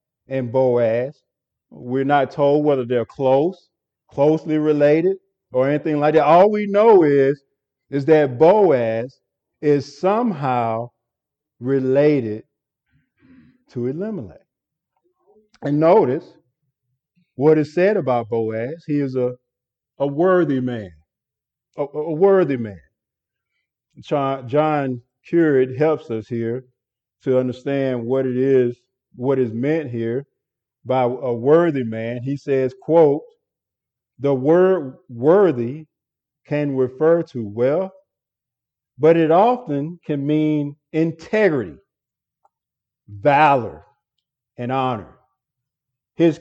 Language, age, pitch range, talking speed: English, 50-69, 125-155 Hz, 105 wpm